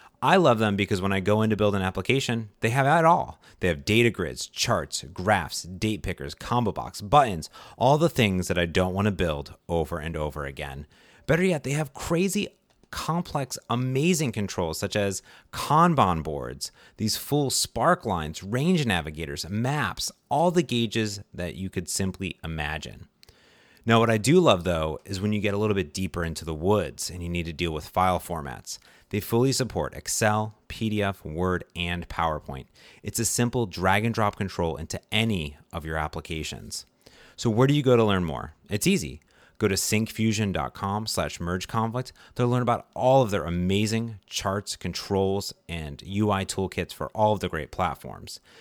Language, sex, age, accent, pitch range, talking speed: English, male, 30-49, American, 85-115 Hz, 175 wpm